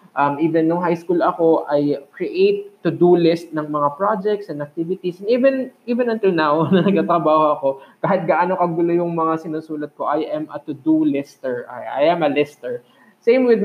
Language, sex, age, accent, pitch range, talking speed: Filipino, male, 20-39, native, 150-185 Hz, 180 wpm